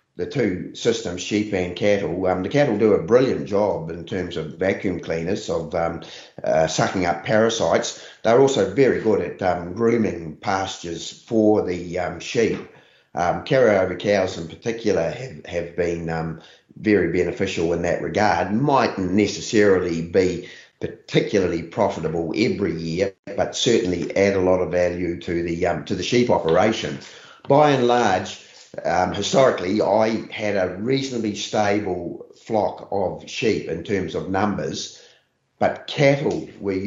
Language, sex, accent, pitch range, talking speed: English, male, Australian, 90-110 Hz, 150 wpm